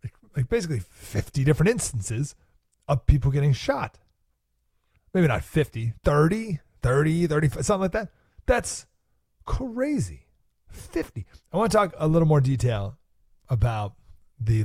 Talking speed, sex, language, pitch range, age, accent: 125 wpm, male, English, 105-165 Hz, 30-49, American